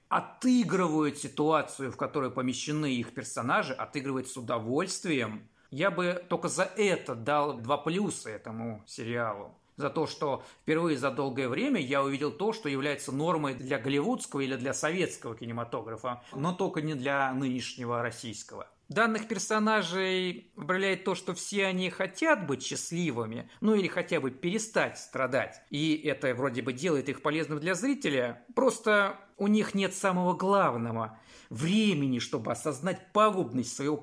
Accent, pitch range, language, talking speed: native, 130-190 Hz, Russian, 145 wpm